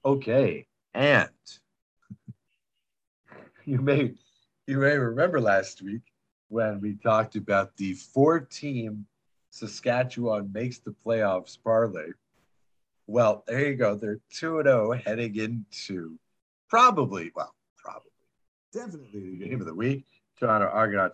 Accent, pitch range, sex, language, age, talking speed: American, 100-125 Hz, male, English, 50-69, 110 wpm